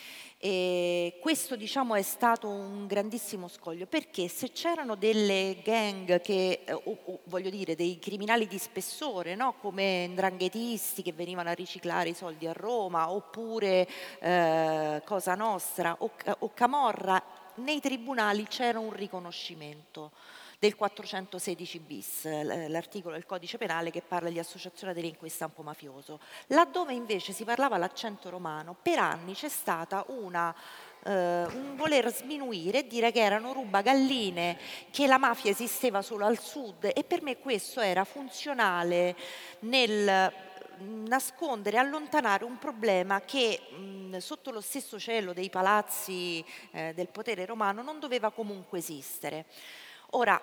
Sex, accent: female, native